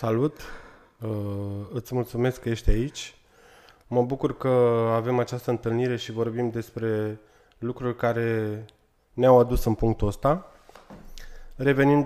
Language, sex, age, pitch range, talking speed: Romanian, male, 20-39, 105-125 Hz, 120 wpm